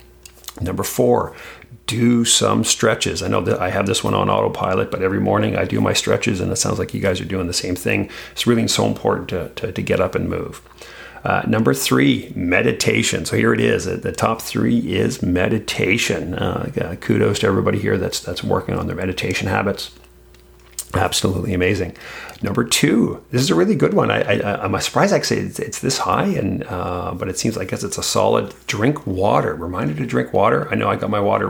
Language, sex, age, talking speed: English, male, 40-59, 210 wpm